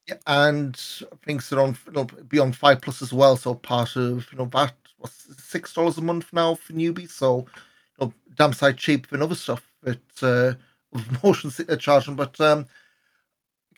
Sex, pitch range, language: male, 130-155 Hz, English